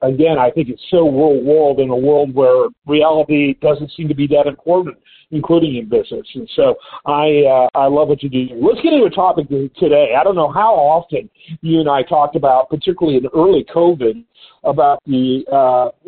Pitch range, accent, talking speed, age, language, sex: 150-220 Hz, American, 195 wpm, 50-69, English, male